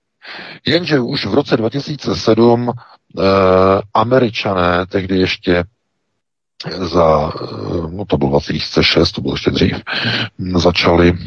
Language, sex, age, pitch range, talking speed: Czech, male, 50-69, 75-90 Hz, 100 wpm